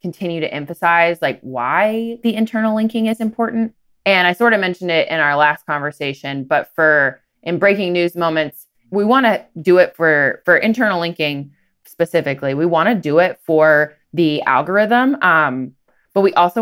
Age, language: 20-39, English